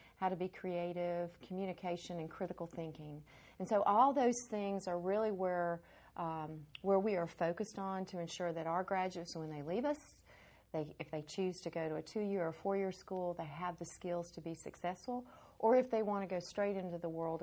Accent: American